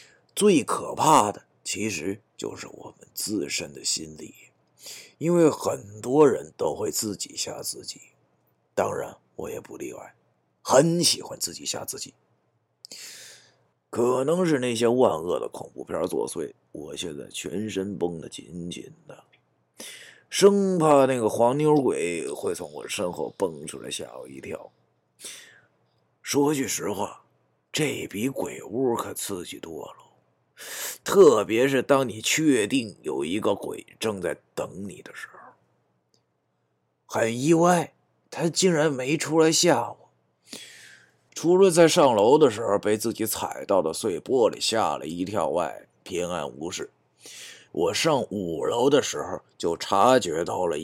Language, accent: Chinese, native